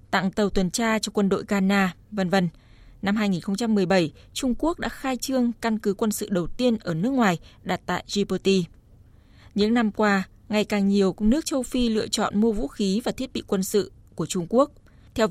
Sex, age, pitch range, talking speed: female, 20-39, 180-225 Hz, 205 wpm